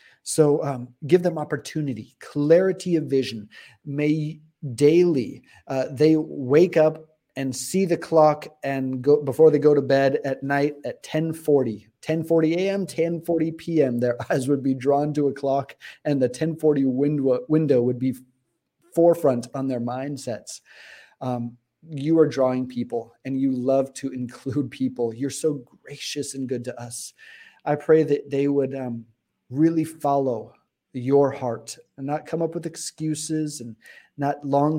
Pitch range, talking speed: 130-155 Hz, 160 wpm